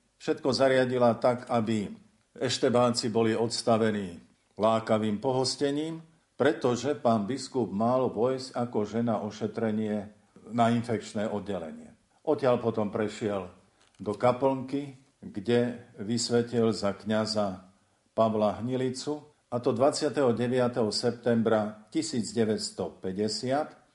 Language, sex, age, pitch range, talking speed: Slovak, male, 50-69, 110-135 Hz, 90 wpm